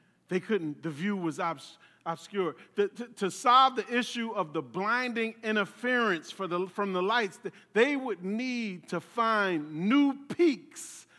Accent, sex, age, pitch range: American, male, 40-59, 175-250 Hz